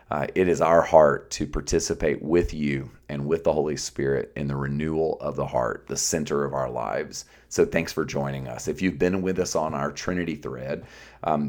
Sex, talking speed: male, 210 wpm